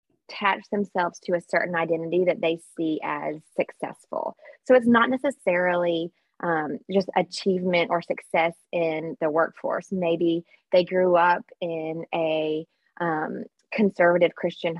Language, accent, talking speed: English, American, 130 wpm